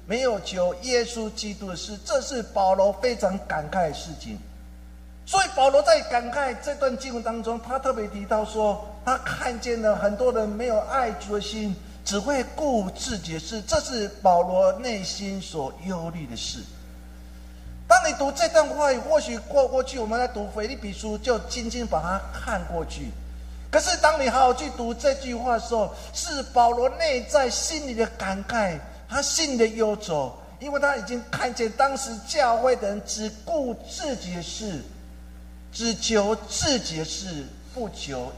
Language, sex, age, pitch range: Chinese, male, 50-69, 185-260 Hz